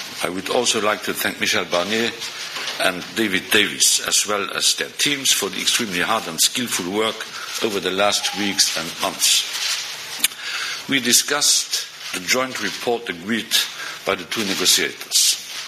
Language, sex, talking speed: English, male, 150 wpm